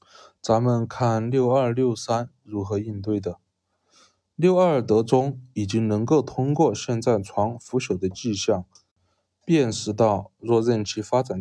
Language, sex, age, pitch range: Chinese, male, 20-39, 100-130 Hz